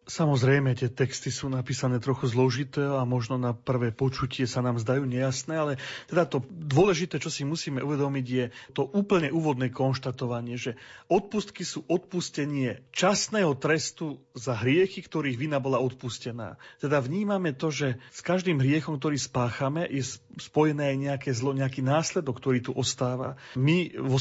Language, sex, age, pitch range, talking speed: Slovak, male, 40-59, 130-155 Hz, 155 wpm